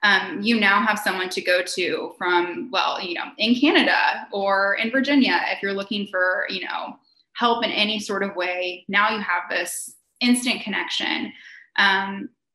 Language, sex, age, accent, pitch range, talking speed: English, female, 20-39, American, 185-230 Hz, 170 wpm